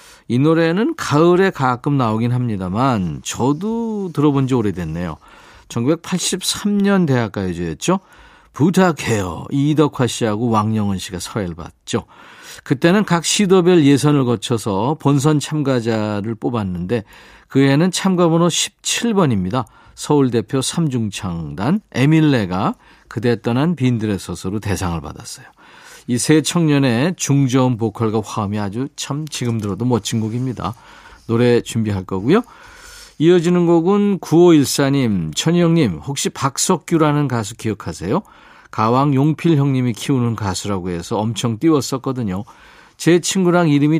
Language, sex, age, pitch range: Korean, male, 40-59, 110-160 Hz